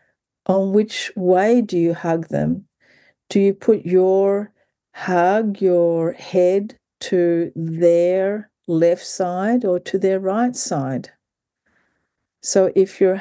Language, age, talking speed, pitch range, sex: English, 50-69, 120 wpm, 170-210 Hz, female